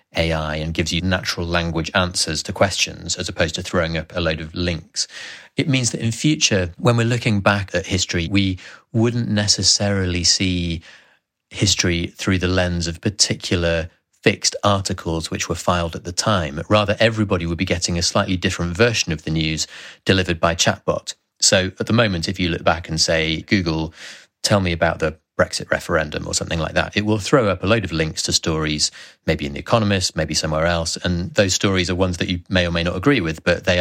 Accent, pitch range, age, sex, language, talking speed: British, 85-105 Hz, 30-49, male, English, 205 wpm